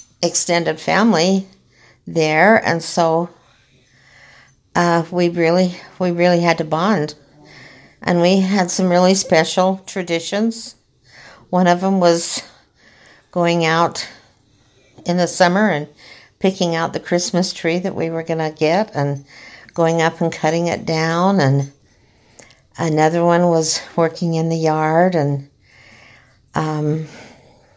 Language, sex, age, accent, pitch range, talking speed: English, female, 60-79, American, 145-175 Hz, 125 wpm